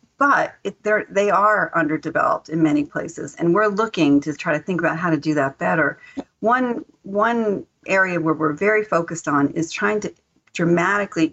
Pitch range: 155-195 Hz